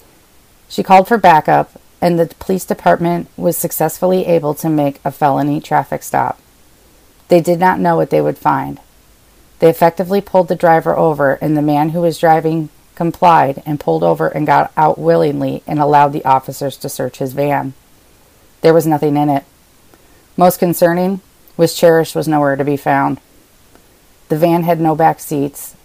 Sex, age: female, 40-59